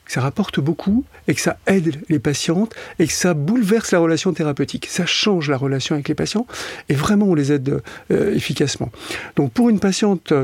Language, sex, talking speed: French, male, 200 wpm